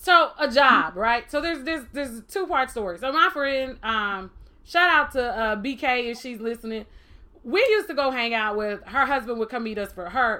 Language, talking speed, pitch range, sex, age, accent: English, 225 wpm, 230-305 Hz, female, 20-39, American